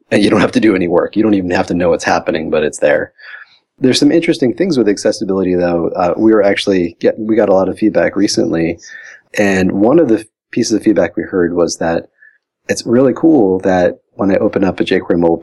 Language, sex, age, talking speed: English, male, 30-49, 235 wpm